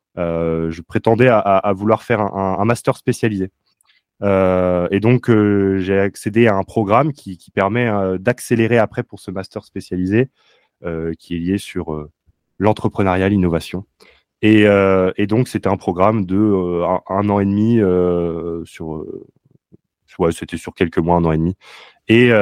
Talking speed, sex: 175 wpm, male